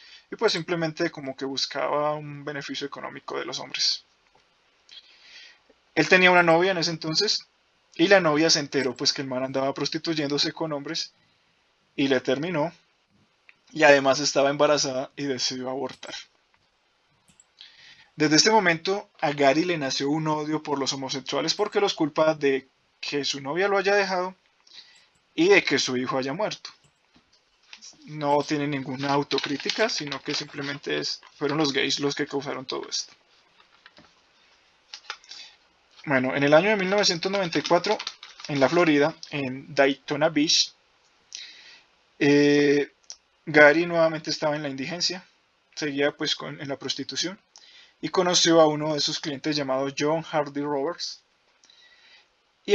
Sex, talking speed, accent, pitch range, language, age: male, 140 wpm, Colombian, 140-170 Hz, Spanish, 20-39